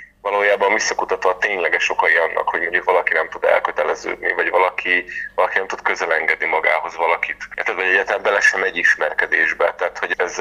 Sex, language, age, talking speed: male, Hungarian, 30-49, 175 wpm